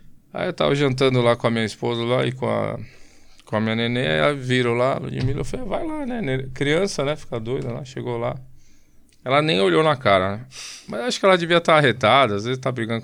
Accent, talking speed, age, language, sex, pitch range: Brazilian, 245 wpm, 20-39, Portuguese, male, 105-135 Hz